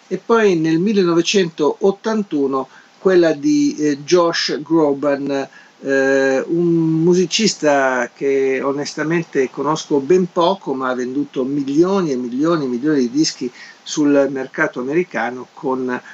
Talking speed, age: 115 wpm, 50-69